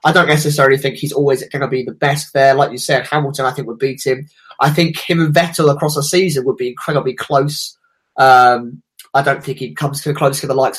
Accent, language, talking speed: British, English, 245 wpm